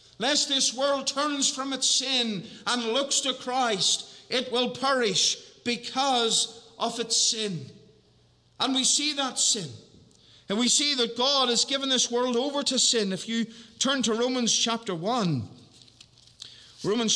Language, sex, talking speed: English, male, 150 wpm